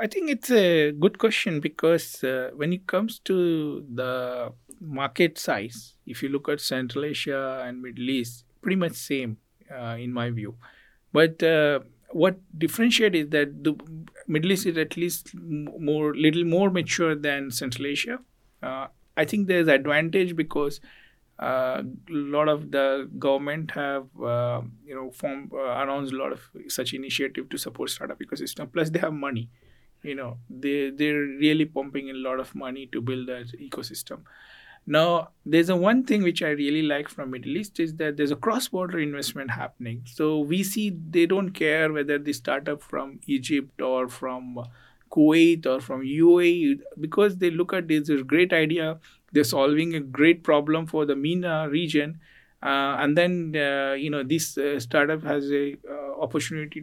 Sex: male